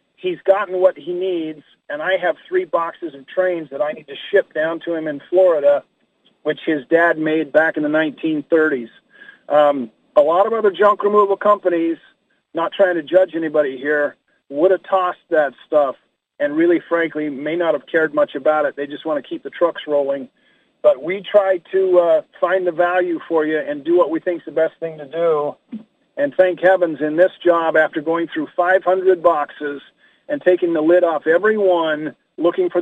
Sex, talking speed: male, 195 wpm